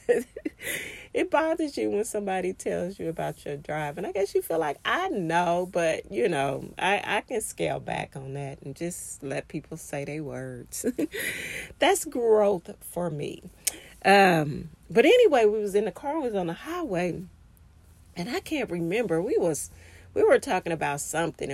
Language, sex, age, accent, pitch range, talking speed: English, female, 30-49, American, 150-195 Hz, 175 wpm